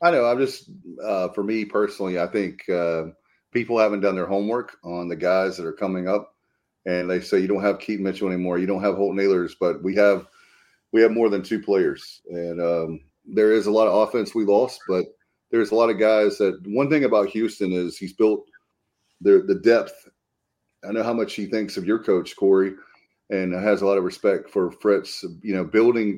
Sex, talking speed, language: male, 215 wpm, English